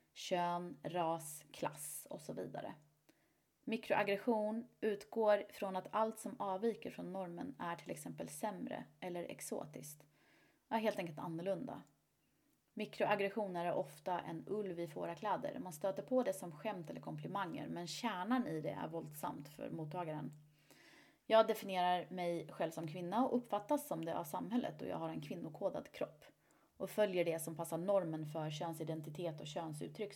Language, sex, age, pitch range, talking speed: Swedish, female, 30-49, 160-210 Hz, 155 wpm